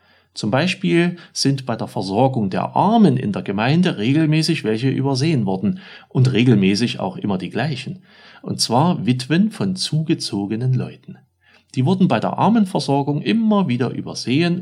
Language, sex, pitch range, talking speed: German, male, 115-175 Hz, 145 wpm